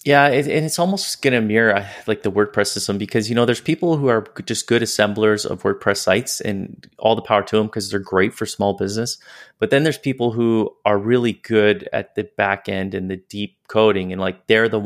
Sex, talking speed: male, 225 wpm